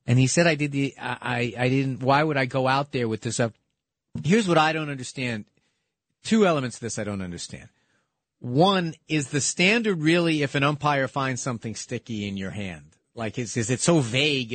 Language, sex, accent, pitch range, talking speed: English, male, American, 125-175 Hz, 205 wpm